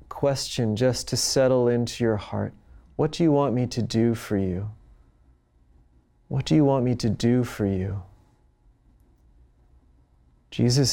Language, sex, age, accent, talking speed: English, male, 30-49, American, 145 wpm